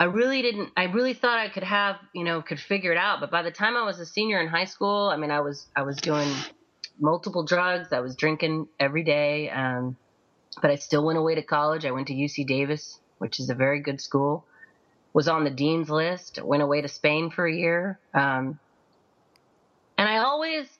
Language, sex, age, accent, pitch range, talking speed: English, female, 30-49, American, 140-180 Hz, 215 wpm